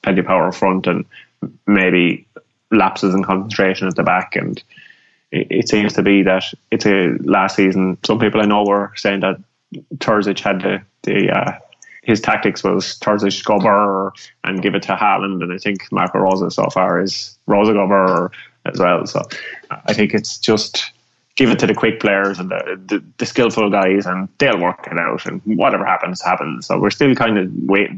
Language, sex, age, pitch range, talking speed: English, male, 20-39, 90-100 Hz, 190 wpm